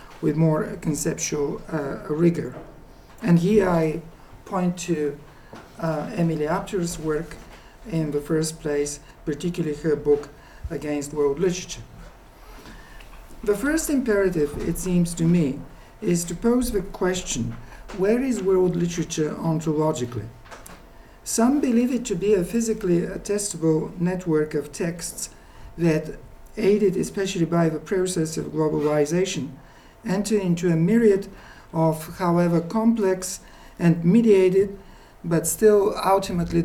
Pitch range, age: 155-200 Hz, 50-69